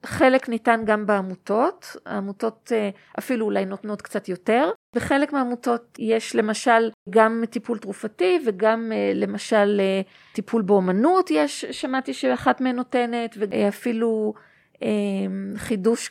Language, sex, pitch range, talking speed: Hebrew, female, 210-245 Hz, 105 wpm